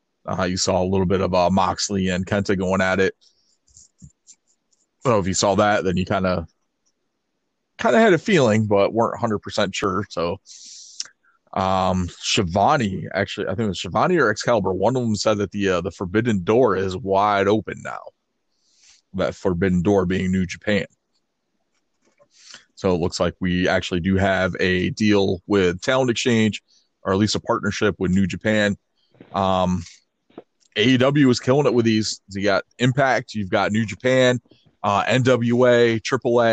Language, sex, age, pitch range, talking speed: English, male, 30-49, 95-115 Hz, 170 wpm